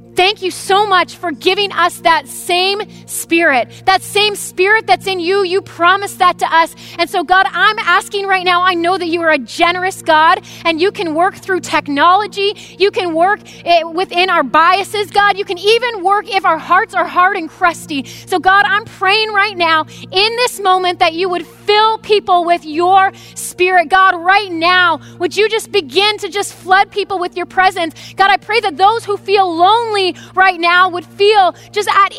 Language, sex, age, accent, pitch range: Japanese, female, 30-49, American, 355-400 Hz